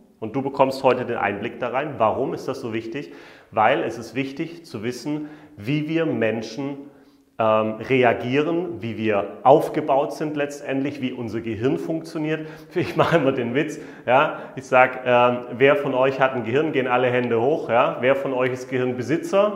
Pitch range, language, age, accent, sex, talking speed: 110-135 Hz, German, 30-49, German, male, 180 wpm